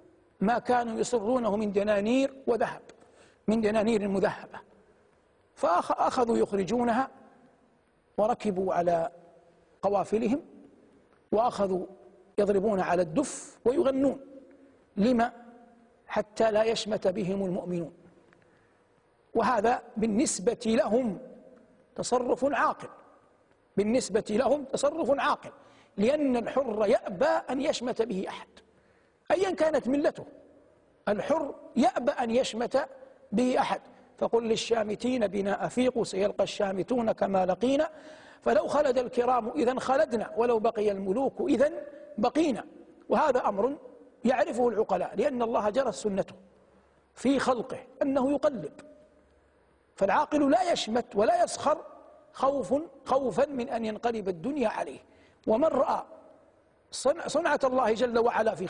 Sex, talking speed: male, 100 wpm